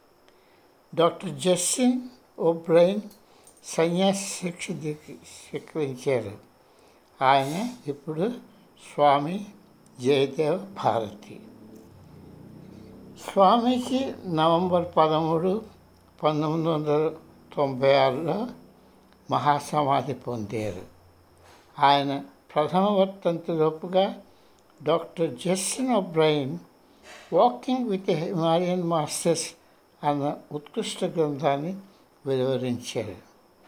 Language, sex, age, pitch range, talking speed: Telugu, male, 60-79, 150-190 Hz, 60 wpm